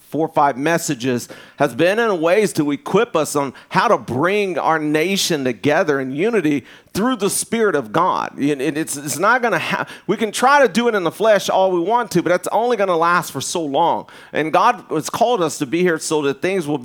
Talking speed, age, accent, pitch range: 230 wpm, 40-59, American, 155-200 Hz